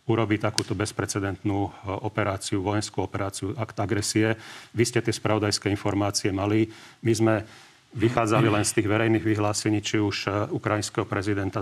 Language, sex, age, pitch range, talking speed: Slovak, male, 40-59, 100-110 Hz, 135 wpm